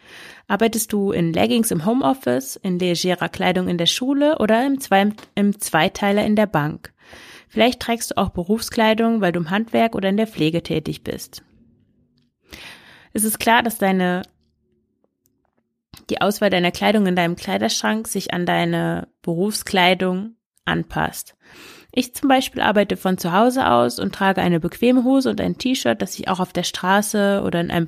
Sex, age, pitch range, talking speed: female, 30-49, 175-220 Hz, 160 wpm